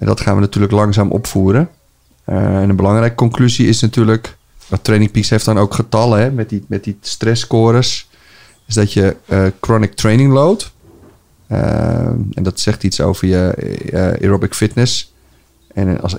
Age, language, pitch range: 30-49, Dutch, 100-115 Hz